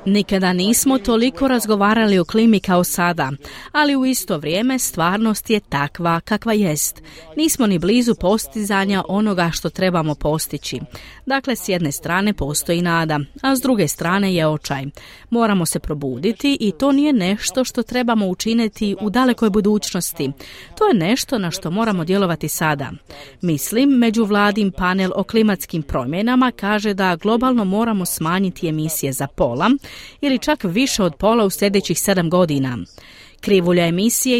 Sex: female